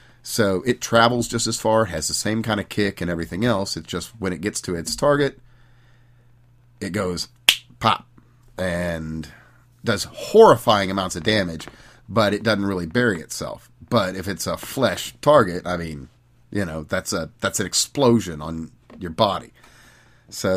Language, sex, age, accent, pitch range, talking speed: English, male, 40-59, American, 90-120 Hz, 165 wpm